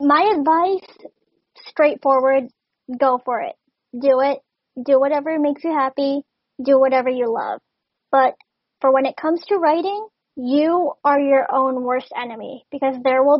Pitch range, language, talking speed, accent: 255-285 Hz, English, 150 wpm, American